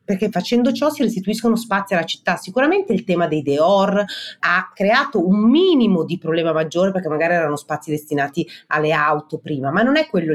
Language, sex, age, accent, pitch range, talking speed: Italian, female, 30-49, native, 155-210 Hz, 185 wpm